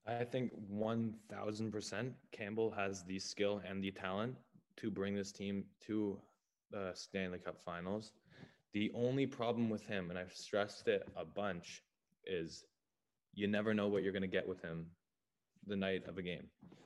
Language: English